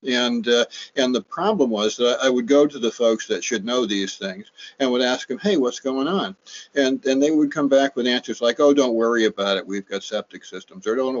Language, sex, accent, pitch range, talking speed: English, male, American, 110-130 Hz, 245 wpm